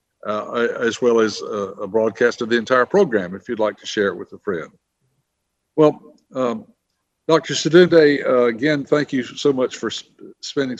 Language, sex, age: English, male, 60-79